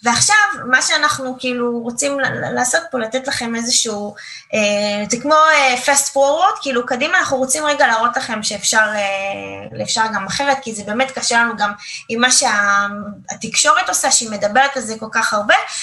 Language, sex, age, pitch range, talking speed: Hebrew, female, 20-39, 220-295 Hz, 170 wpm